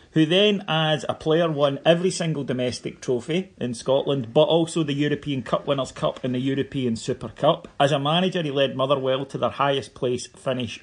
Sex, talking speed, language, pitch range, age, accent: male, 195 wpm, English, 120-165 Hz, 40-59, British